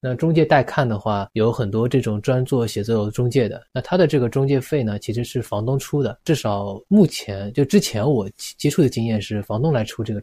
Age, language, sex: 20-39, Chinese, male